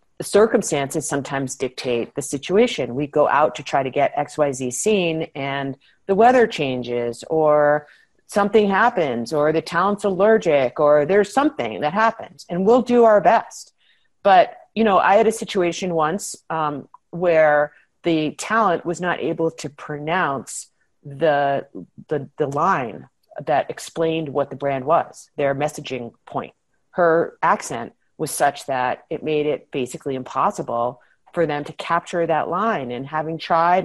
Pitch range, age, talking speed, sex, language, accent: 140-180 Hz, 40-59, 150 wpm, female, English, American